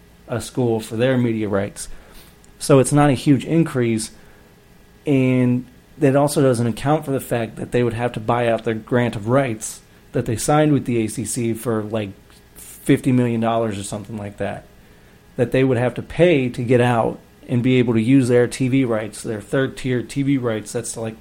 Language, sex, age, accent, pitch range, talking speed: English, male, 30-49, American, 115-145 Hz, 200 wpm